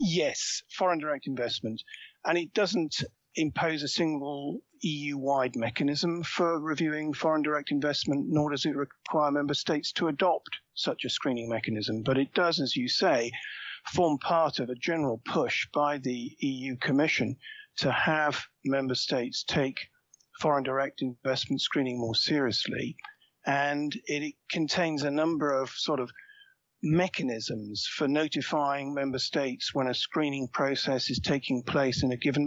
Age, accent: 50-69, British